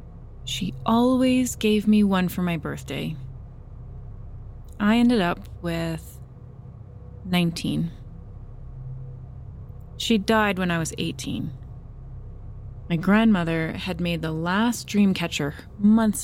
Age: 20-39